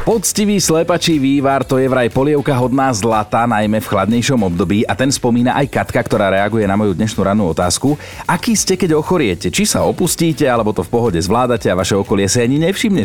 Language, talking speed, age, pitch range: Slovak, 200 wpm, 30-49, 95-135 Hz